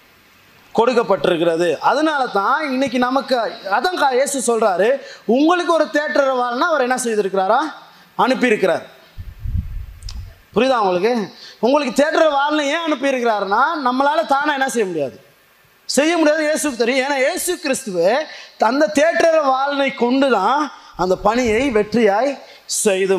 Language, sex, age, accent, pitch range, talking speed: Tamil, male, 20-39, native, 190-270 Hz, 115 wpm